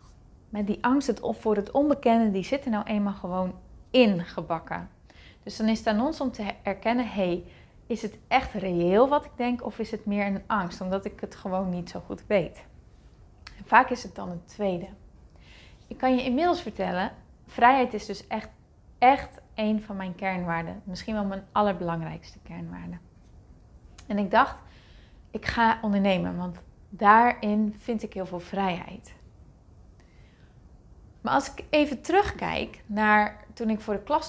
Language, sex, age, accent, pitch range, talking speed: Dutch, female, 20-39, Dutch, 190-245 Hz, 165 wpm